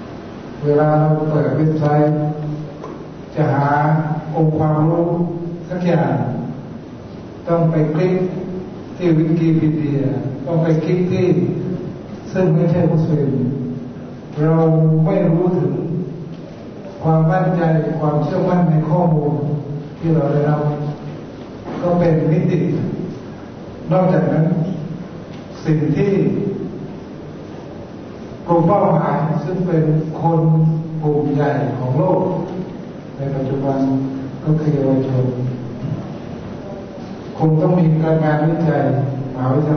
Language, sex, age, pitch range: Thai, male, 60-79, 150-175 Hz